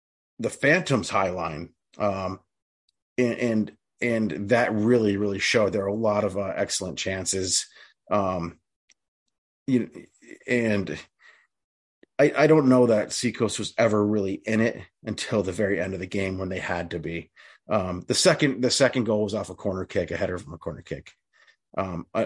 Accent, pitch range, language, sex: American, 95-120 Hz, English, male